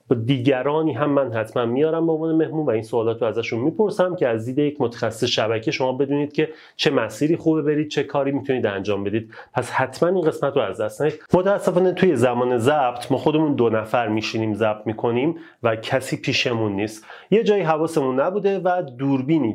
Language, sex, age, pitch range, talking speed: Persian, male, 30-49, 120-175 Hz, 180 wpm